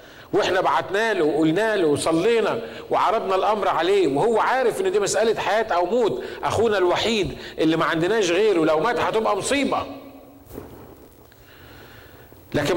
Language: Arabic